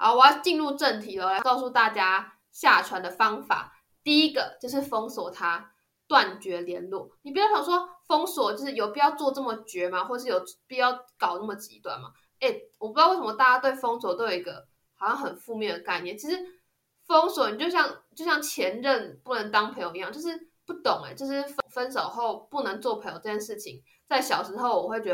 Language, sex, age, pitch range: Chinese, female, 20-39, 230-320 Hz